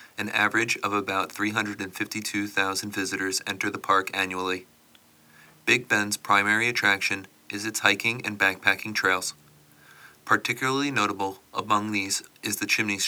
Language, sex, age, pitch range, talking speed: English, male, 30-49, 95-110 Hz, 125 wpm